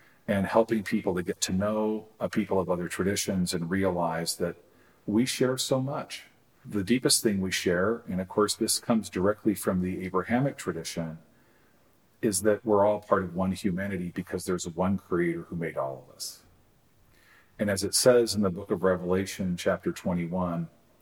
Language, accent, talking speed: English, American, 175 wpm